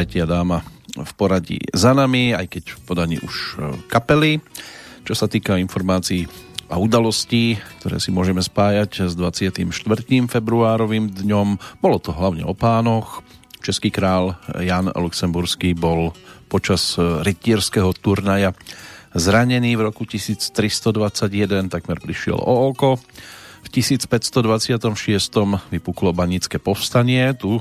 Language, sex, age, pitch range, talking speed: Slovak, male, 40-59, 90-110 Hz, 115 wpm